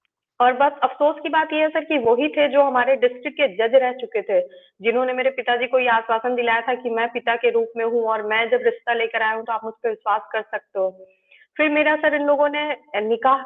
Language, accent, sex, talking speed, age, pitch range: Hindi, native, female, 250 wpm, 30-49, 230-285 Hz